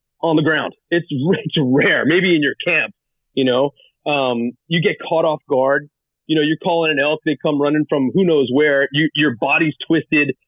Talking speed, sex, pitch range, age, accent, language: 200 wpm, male, 130-160 Hz, 30-49, American, English